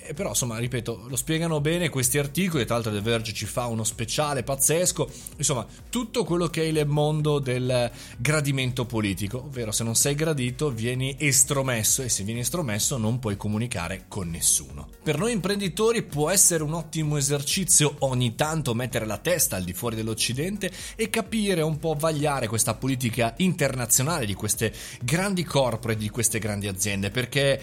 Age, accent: 20-39, native